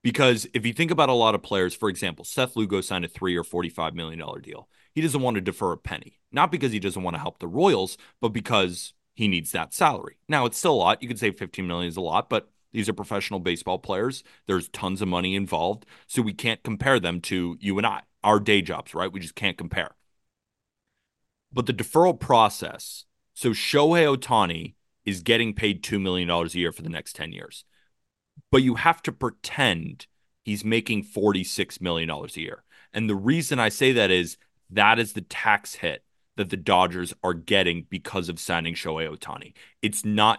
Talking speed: 205 wpm